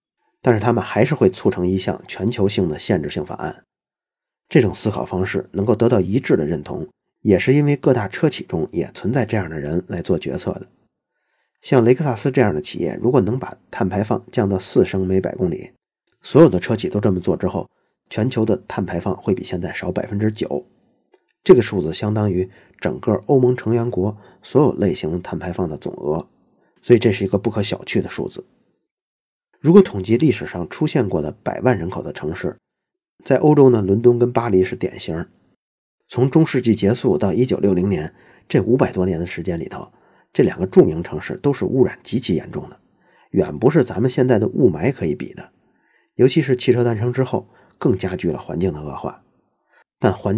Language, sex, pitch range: Chinese, male, 95-130 Hz